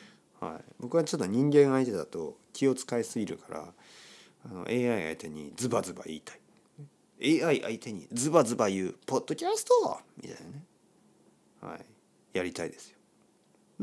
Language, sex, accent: Japanese, male, native